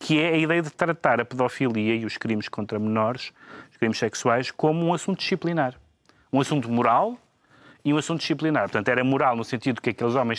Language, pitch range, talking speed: Portuguese, 115-155 Hz, 200 wpm